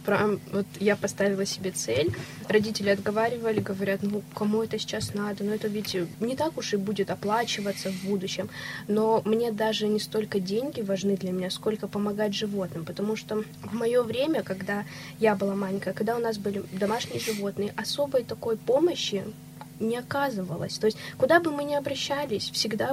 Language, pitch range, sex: Russian, 195-225 Hz, female